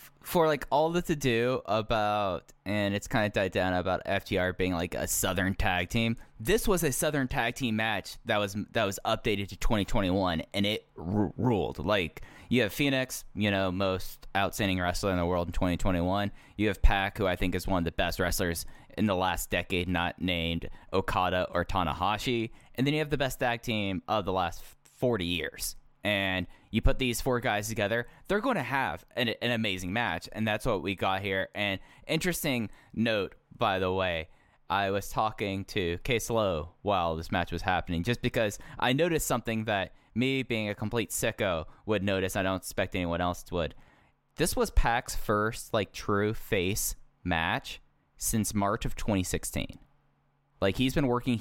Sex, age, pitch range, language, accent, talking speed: male, 10-29, 95-120 Hz, English, American, 185 wpm